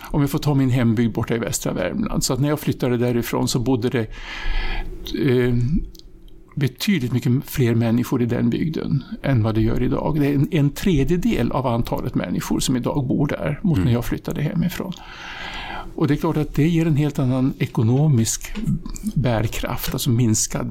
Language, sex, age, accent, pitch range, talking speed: Swedish, male, 60-79, Norwegian, 125-155 Hz, 180 wpm